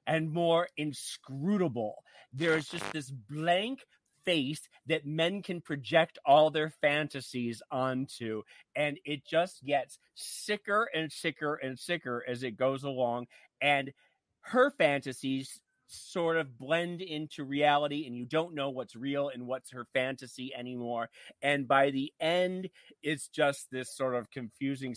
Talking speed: 140 wpm